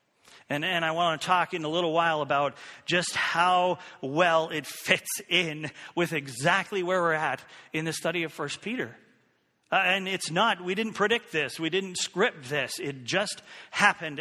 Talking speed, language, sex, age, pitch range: 180 wpm, English, male, 40-59, 155-185 Hz